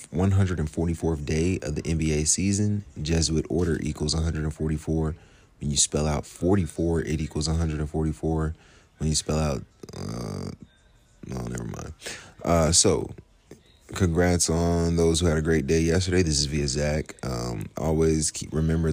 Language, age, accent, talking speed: English, 30-49, American, 145 wpm